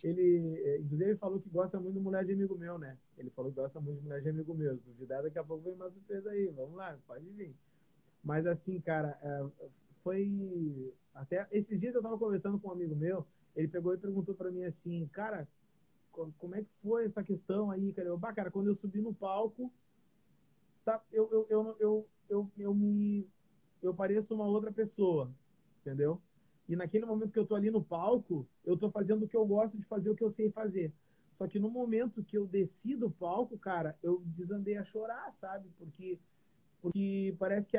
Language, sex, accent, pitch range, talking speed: Portuguese, male, Brazilian, 175-210 Hz, 205 wpm